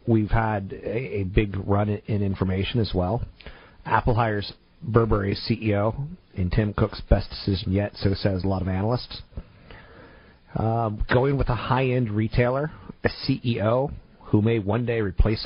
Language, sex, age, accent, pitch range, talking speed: English, male, 40-59, American, 95-120 Hz, 150 wpm